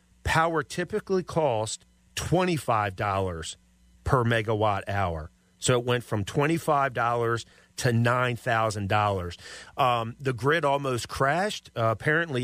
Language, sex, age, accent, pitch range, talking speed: English, male, 40-59, American, 105-130 Hz, 130 wpm